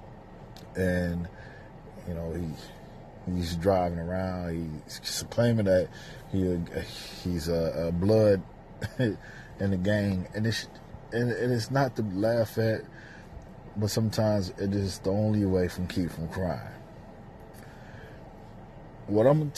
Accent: American